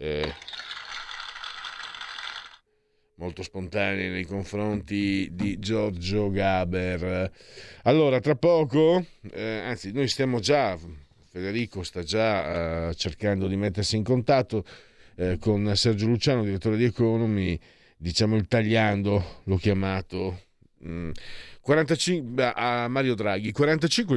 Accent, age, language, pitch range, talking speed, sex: native, 50-69, Italian, 95-125 Hz, 105 wpm, male